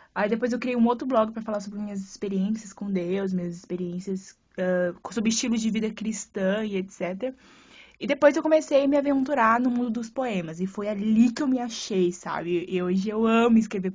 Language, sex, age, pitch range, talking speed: Portuguese, female, 20-39, 200-250 Hz, 200 wpm